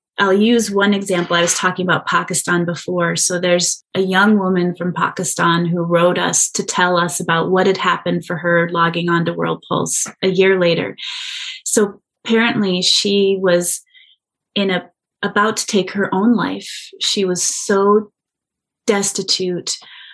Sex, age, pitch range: female, 30-49, 175-205 Hz